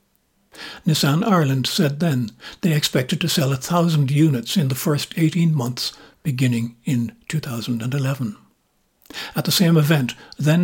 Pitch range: 130-165 Hz